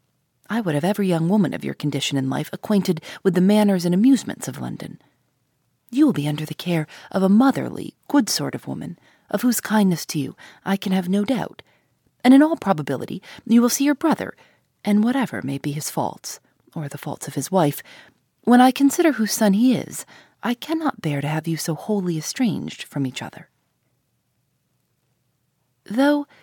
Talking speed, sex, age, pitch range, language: 190 wpm, female, 30-49, 160-245 Hz, English